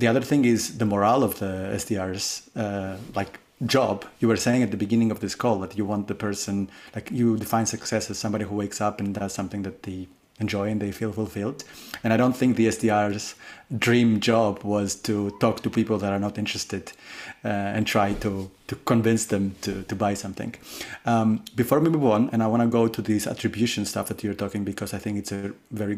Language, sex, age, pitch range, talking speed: English, male, 30-49, 100-120 Hz, 220 wpm